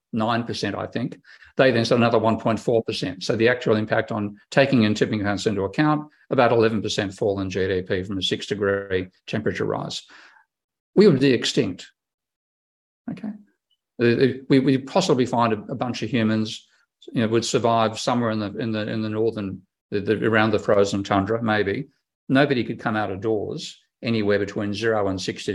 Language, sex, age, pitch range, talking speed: English, male, 50-69, 105-130 Hz, 170 wpm